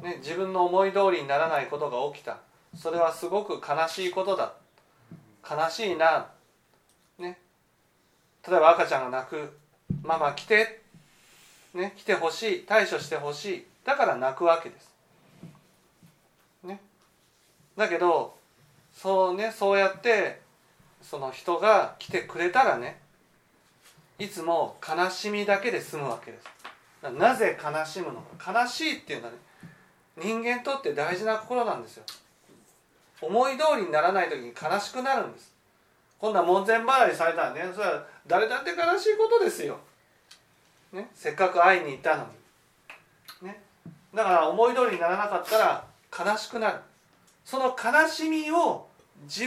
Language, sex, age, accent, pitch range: Japanese, male, 40-59, native, 170-235 Hz